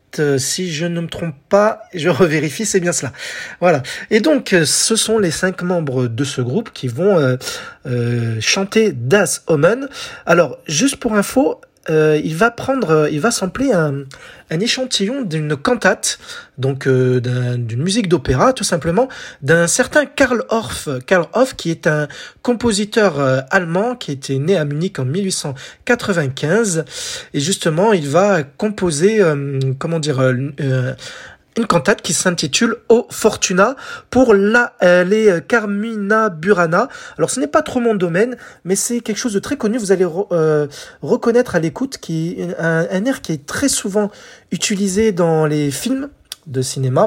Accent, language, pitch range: French, French, 155-220 Hz